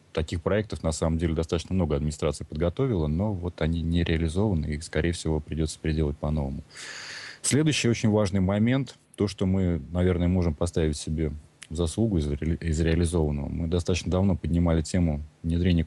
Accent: native